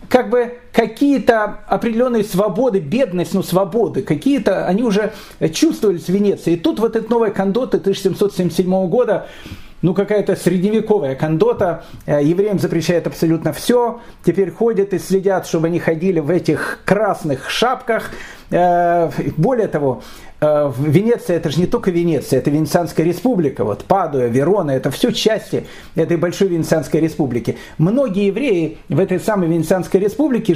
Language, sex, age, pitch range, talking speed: Russian, male, 40-59, 165-215 Hz, 135 wpm